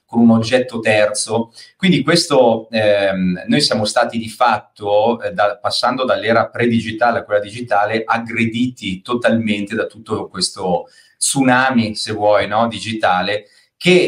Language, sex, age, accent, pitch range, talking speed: Italian, male, 30-49, native, 105-125 Hz, 130 wpm